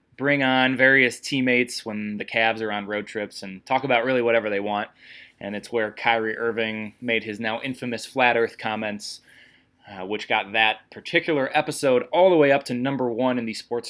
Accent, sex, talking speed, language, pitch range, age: American, male, 200 wpm, English, 100-130 Hz, 20-39